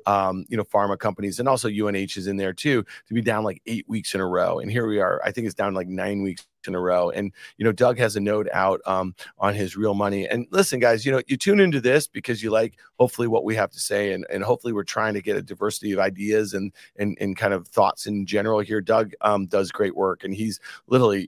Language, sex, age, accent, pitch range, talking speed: English, male, 40-59, American, 100-130 Hz, 265 wpm